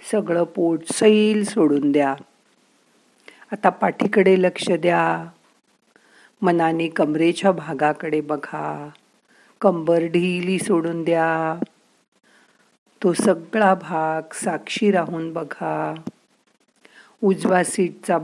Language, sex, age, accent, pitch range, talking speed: Marathi, female, 50-69, native, 160-195 Hz, 80 wpm